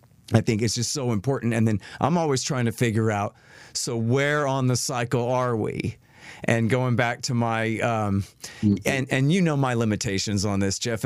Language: English